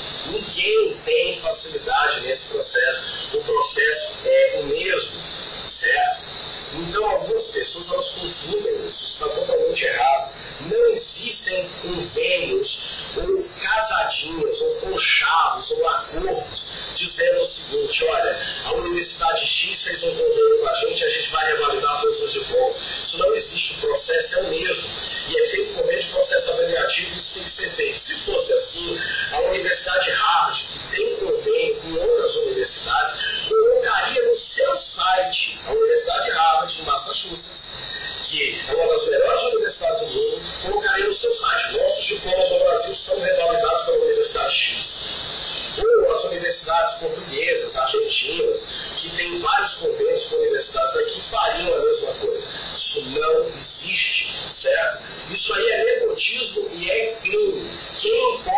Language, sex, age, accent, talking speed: English, male, 40-59, Brazilian, 140 wpm